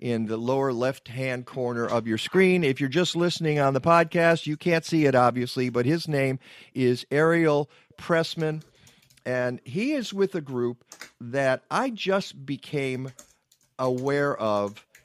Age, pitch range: 50-69, 115-150 Hz